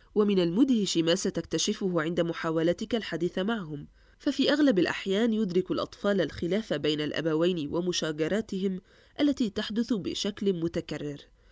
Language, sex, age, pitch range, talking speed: Arabic, female, 20-39, 170-230 Hz, 110 wpm